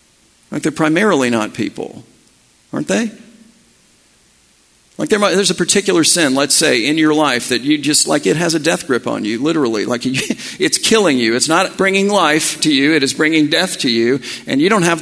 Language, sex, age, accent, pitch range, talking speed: English, male, 50-69, American, 130-180 Hz, 195 wpm